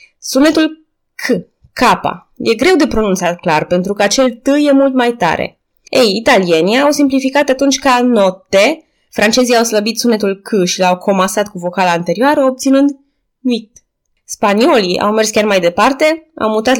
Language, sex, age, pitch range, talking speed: Romanian, female, 20-39, 200-275 Hz, 160 wpm